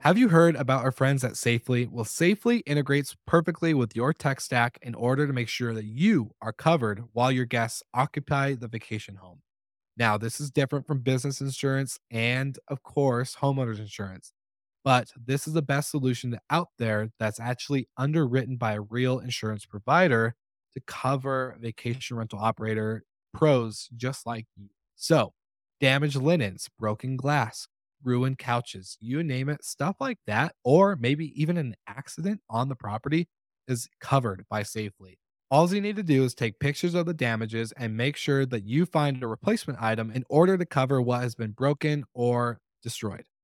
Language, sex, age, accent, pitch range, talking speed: English, male, 20-39, American, 115-145 Hz, 175 wpm